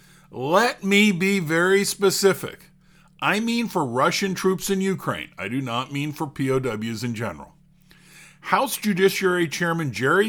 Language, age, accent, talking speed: English, 50-69, American, 140 wpm